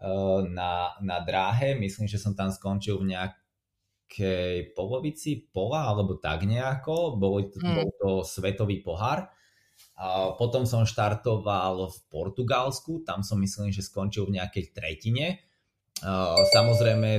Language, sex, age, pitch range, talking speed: Slovak, male, 20-39, 95-110 Hz, 120 wpm